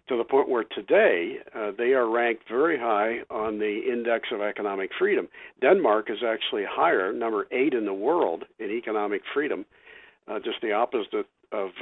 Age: 50-69